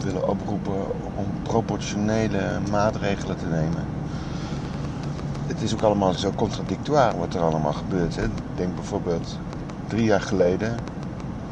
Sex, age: male, 50-69